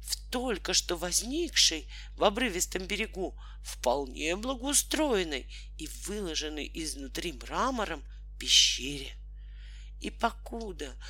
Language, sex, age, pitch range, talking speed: Russian, male, 50-69, 140-225 Hz, 85 wpm